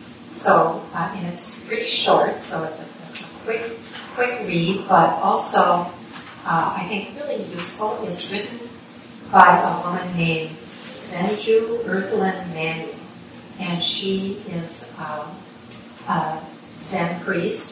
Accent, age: American, 40-59